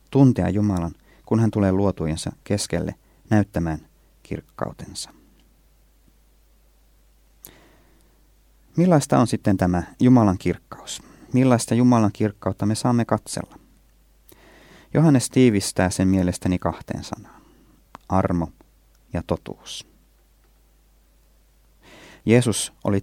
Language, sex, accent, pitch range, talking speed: Finnish, male, native, 85-115 Hz, 85 wpm